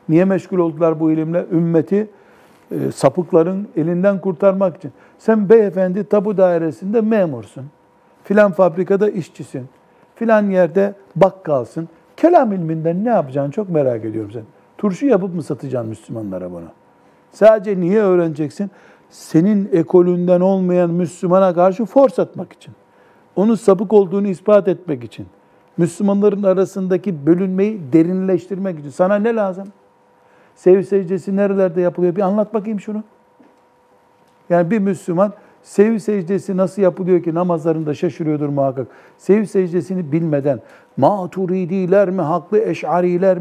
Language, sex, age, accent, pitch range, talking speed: Turkish, male, 60-79, native, 160-200 Hz, 120 wpm